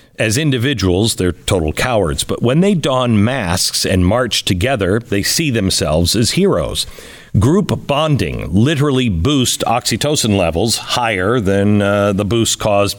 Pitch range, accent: 95-135 Hz, American